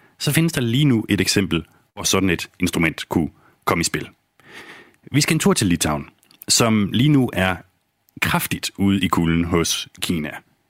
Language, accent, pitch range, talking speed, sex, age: Danish, native, 85-105 Hz, 175 wpm, male, 30-49